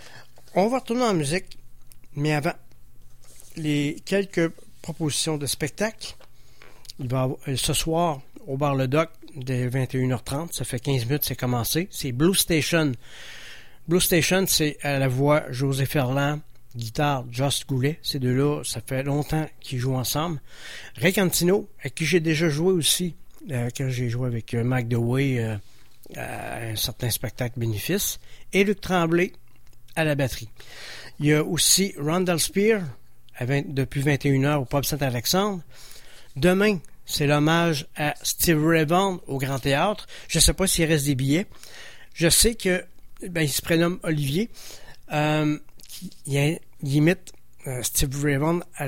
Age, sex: 60-79, male